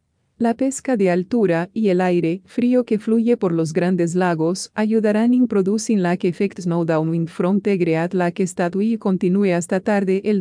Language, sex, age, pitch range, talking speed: English, female, 40-59, 175-215 Hz, 180 wpm